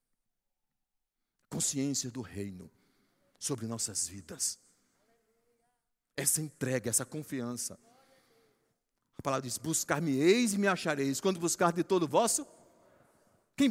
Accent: Brazilian